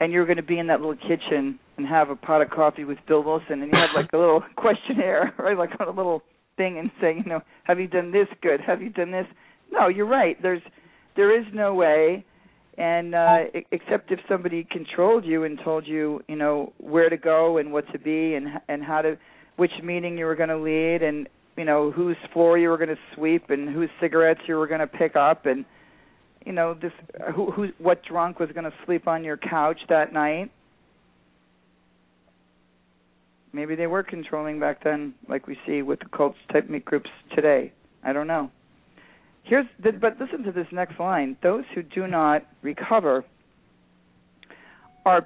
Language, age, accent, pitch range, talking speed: English, 50-69, American, 145-180 Hz, 200 wpm